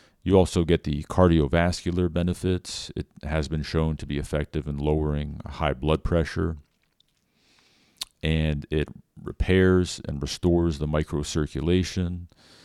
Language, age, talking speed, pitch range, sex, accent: English, 40-59, 120 wpm, 75-90 Hz, male, American